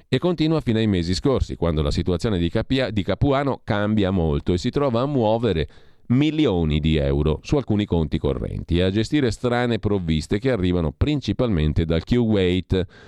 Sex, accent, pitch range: male, native, 85-115 Hz